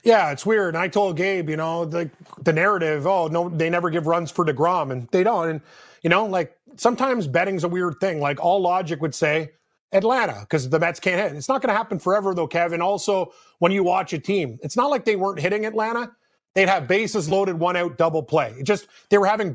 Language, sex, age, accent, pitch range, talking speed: English, male, 30-49, American, 165-205 Hz, 235 wpm